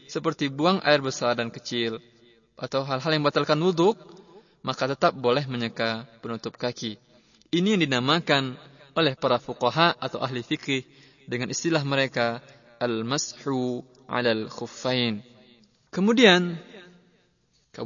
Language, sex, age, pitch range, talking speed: Indonesian, male, 20-39, 125-160 Hz, 115 wpm